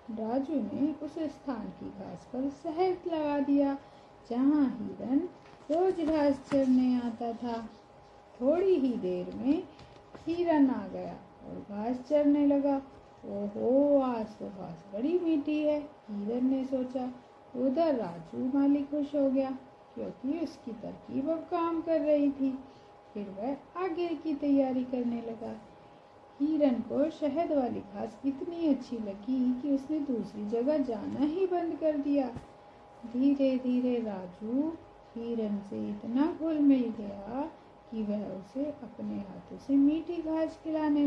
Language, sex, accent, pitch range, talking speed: Hindi, female, native, 235-295 Hz, 135 wpm